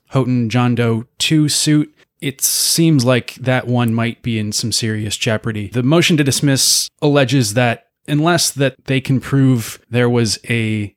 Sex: male